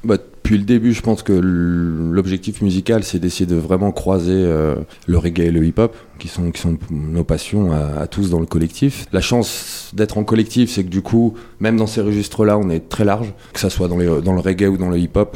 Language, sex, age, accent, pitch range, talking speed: French, male, 20-39, French, 85-105 Hz, 240 wpm